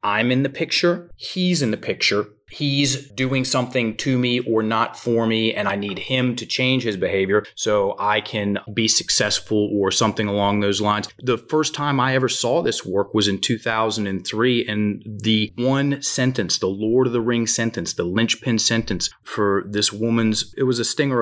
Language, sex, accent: English, male, American